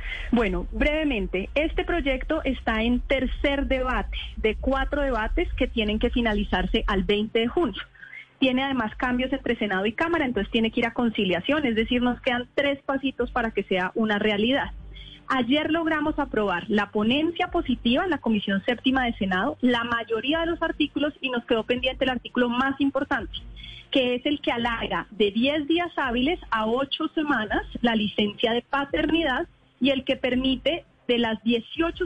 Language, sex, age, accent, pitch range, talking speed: Spanish, female, 30-49, Colombian, 220-280 Hz, 170 wpm